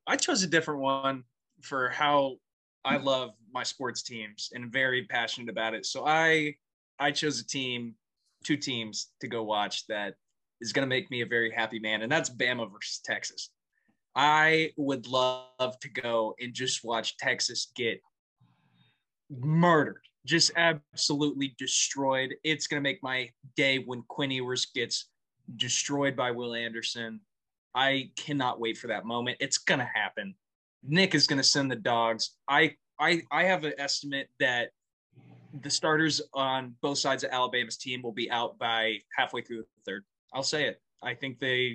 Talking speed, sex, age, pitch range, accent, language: 170 wpm, male, 20-39, 120-145 Hz, American, English